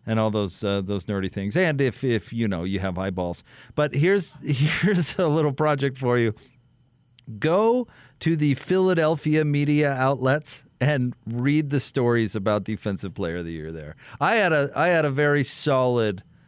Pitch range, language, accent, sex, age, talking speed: 105-155 Hz, English, American, male, 40-59, 175 wpm